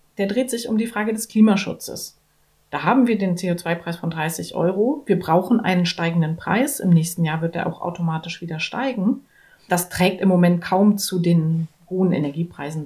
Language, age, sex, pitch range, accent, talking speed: German, 30-49, female, 170-220 Hz, German, 180 wpm